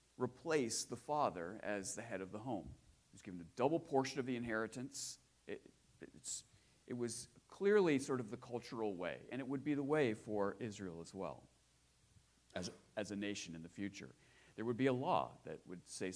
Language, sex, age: English, male, 40-59